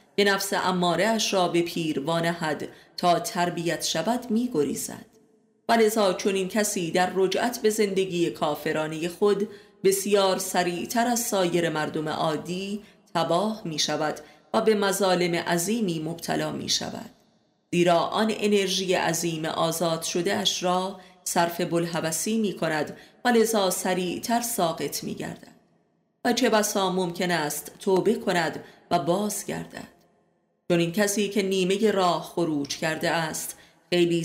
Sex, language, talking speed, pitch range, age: female, Persian, 130 wpm, 170-205 Hz, 30-49